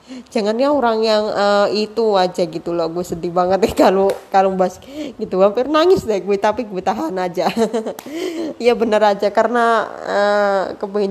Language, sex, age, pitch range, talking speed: Indonesian, female, 20-39, 190-255 Hz, 160 wpm